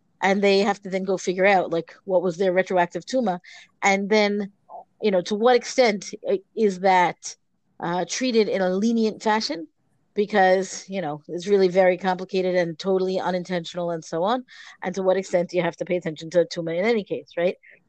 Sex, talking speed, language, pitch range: female, 195 wpm, English, 180-225 Hz